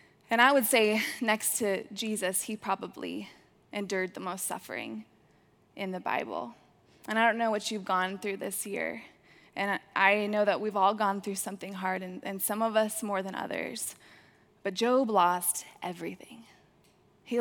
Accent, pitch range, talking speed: American, 190-220 Hz, 170 wpm